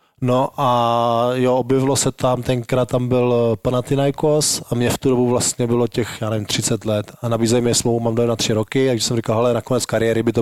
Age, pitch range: 20-39, 115-135 Hz